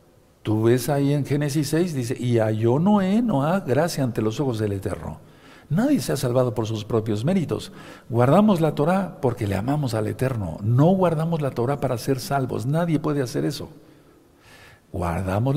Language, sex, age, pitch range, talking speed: Spanish, male, 60-79, 110-145 Hz, 180 wpm